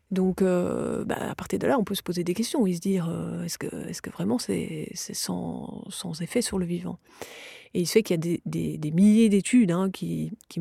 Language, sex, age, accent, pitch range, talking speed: French, female, 30-49, French, 170-205 Hz, 250 wpm